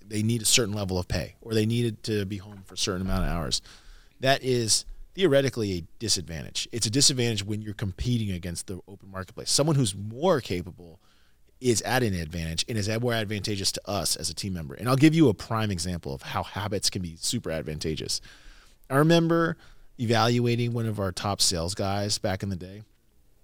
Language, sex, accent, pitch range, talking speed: English, male, American, 90-125 Hz, 200 wpm